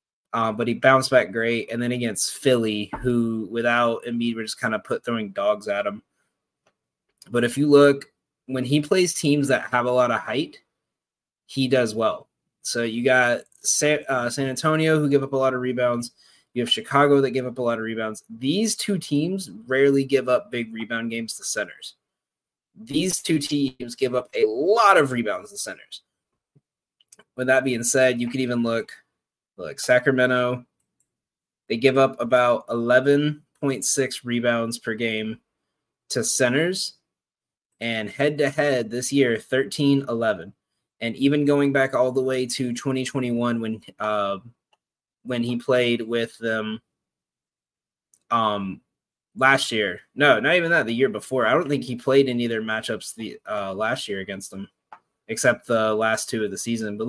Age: 20-39